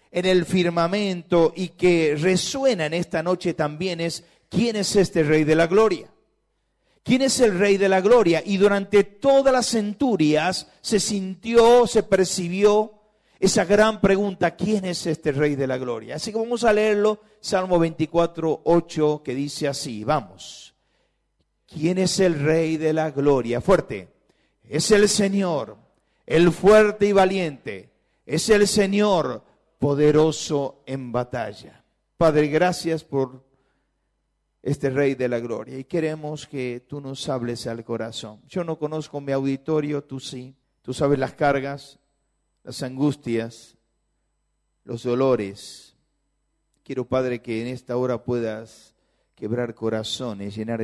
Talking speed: 140 wpm